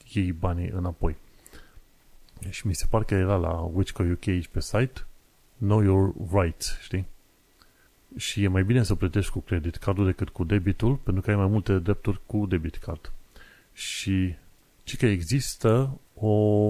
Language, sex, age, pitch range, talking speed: Romanian, male, 30-49, 90-105 Hz, 160 wpm